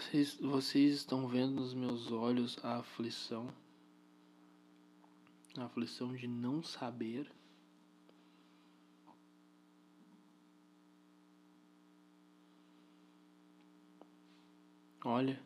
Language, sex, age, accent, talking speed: Portuguese, male, 20-39, Brazilian, 60 wpm